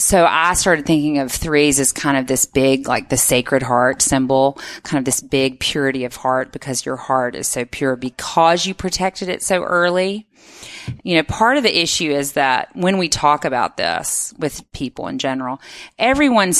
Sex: female